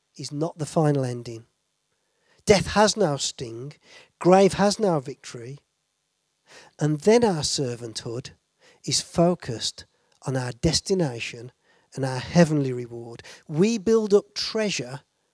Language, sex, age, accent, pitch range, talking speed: English, male, 40-59, British, 130-190 Hz, 115 wpm